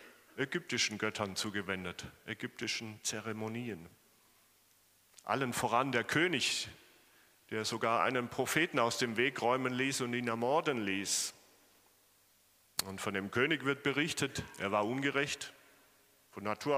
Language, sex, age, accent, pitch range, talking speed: German, male, 40-59, German, 110-145 Hz, 120 wpm